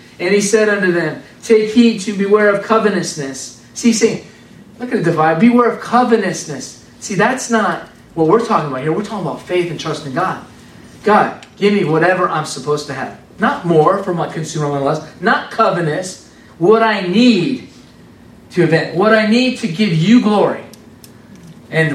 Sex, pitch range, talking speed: male, 160-220 Hz, 180 wpm